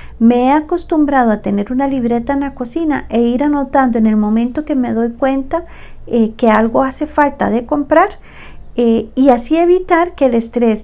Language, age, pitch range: Spanish, 40-59, 225-285 Hz